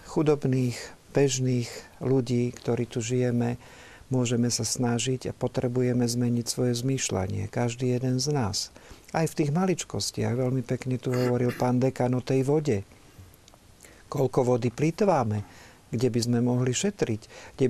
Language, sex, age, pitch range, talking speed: Slovak, male, 50-69, 115-140 Hz, 135 wpm